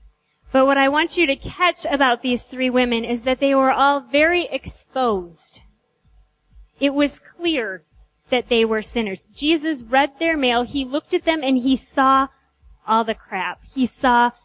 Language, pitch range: English, 215-265 Hz